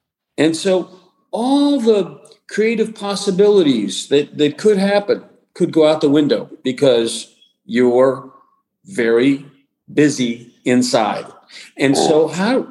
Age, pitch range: 40-59, 135-200 Hz